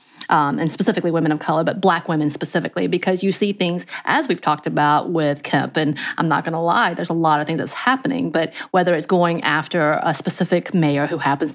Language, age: English, 30-49